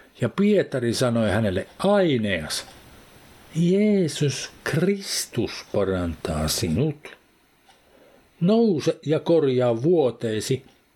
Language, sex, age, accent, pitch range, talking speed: Finnish, male, 50-69, native, 115-160 Hz, 70 wpm